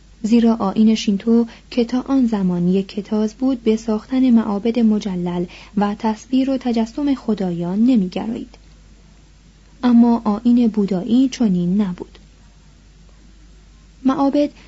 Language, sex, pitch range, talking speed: Persian, female, 205-260 Hz, 105 wpm